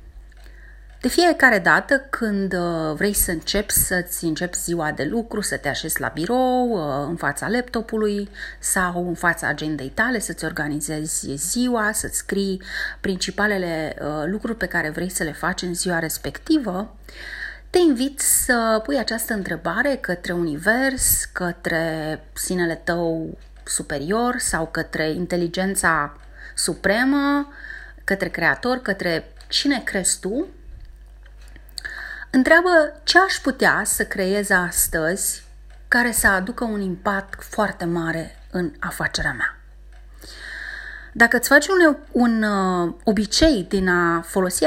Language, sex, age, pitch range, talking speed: Romanian, female, 30-49, 170-245 Hz, 120 wpm